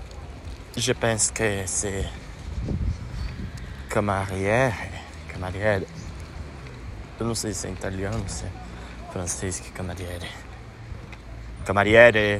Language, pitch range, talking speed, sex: Portuguese, 90-120 Hz, 85 wpm, male